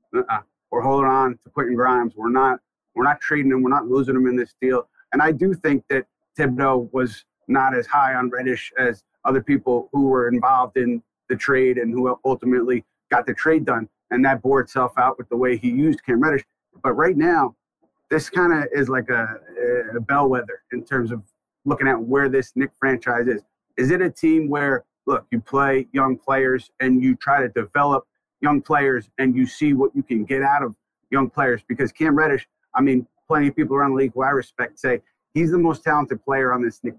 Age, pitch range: 30-49, 125-145 Hz